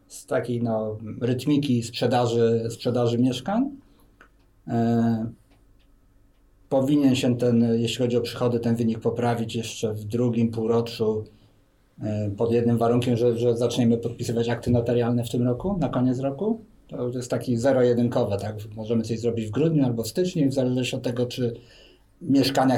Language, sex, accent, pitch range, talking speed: Polish, male, native, 115-135 Hz, 150 wpm